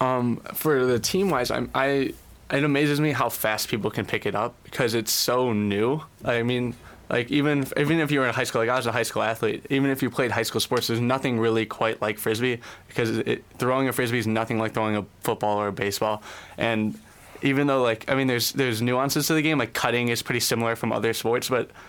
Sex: male